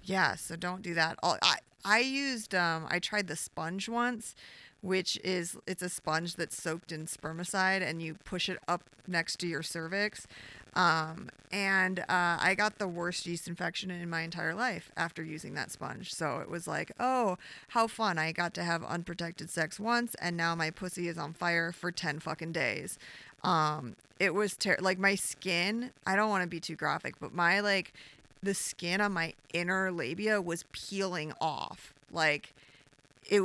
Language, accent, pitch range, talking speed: English, American, 160-195 Hz, 180 wpm